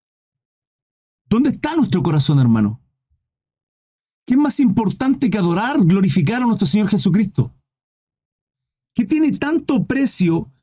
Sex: male